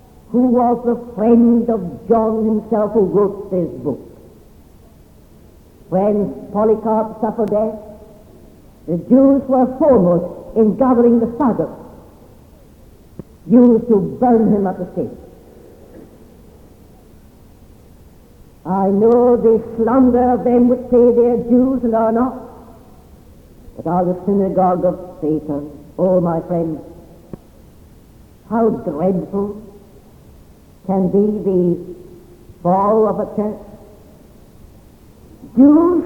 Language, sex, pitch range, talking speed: English, female, 190-265 Hz, 105 wpm